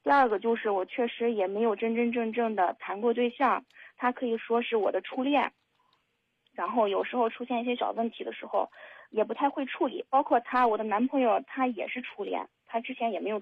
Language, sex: Chinese, female